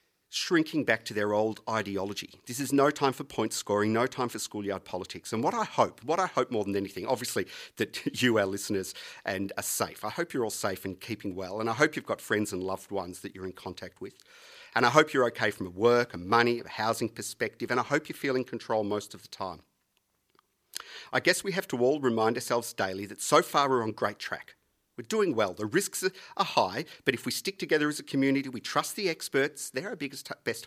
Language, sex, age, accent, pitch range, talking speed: English, male, 40-59, Australian, 110-145 Hz, 235 wpm